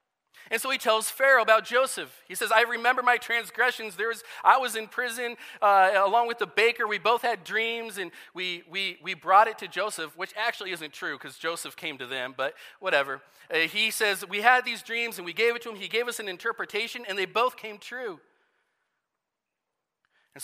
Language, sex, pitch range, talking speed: English, male, 155-220 Hz, 210 wpm